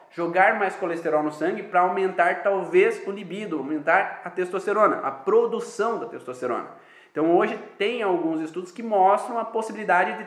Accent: Brazilian